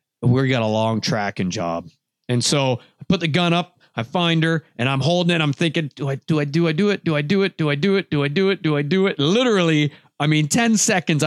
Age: 50-69